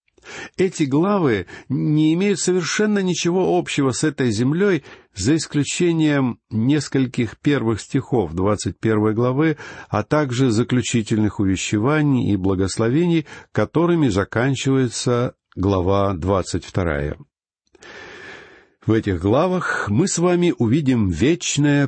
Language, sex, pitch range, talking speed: Russian, male, 100-155 Hz, 100 wpm